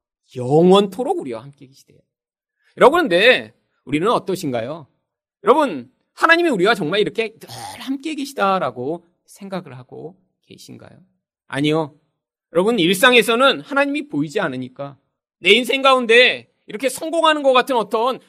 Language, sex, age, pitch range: Korean, male, 40-59, 150-250 Hz